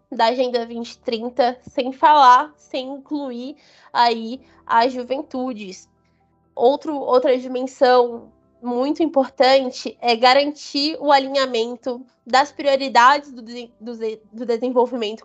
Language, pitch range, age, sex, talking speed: Portuguese, 245-290 Hz, 20-39, female, 95 wpm